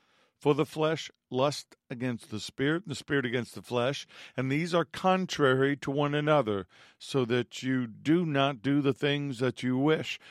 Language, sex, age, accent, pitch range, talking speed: English, male, 50-69, American, 120-145 Hz, 180 wpm